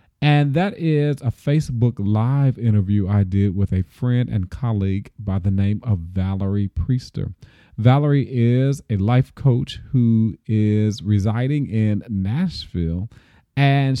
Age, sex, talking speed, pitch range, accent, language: 40-59, male, 135 wpm, 100-130 Hz, American, English